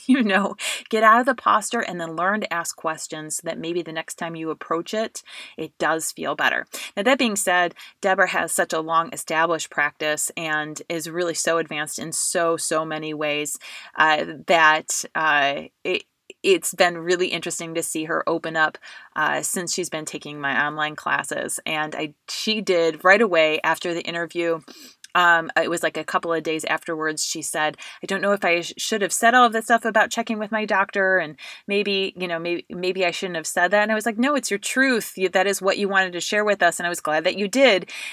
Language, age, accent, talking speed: English, 20-39, American, 220 wpm